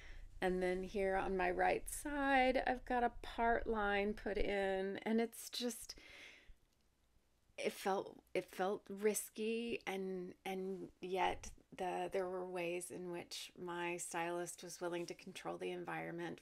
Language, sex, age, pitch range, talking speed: English, female, 30-49, 175-215 Hz, 145 wpm